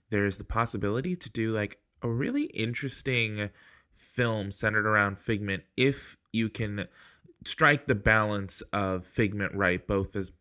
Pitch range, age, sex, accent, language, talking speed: 95-110 Hz, 20-39, male, American, English, 145 wpm